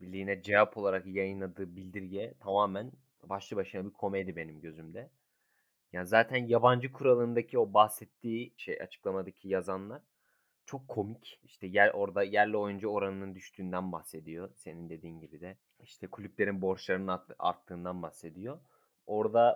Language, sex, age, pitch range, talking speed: Turkish, male, 30-49, 95-125 Hz, 125 wpm